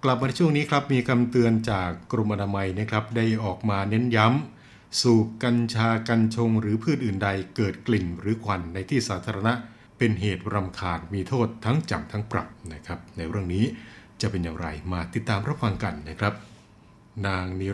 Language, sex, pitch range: Thai, male, 100-120 Hz